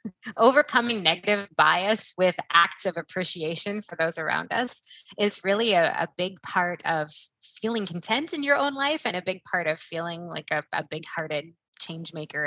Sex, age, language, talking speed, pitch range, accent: female, 20-39, English, 180 wpm, 165-220 Hz, American